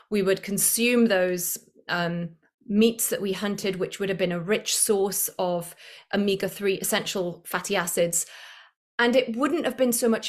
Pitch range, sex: 185-225 Hz, female